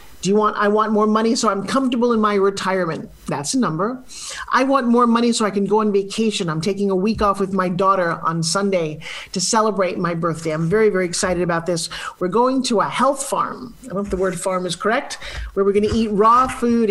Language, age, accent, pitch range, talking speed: English, 40-59, American, 190-235 Hz, 240 wpm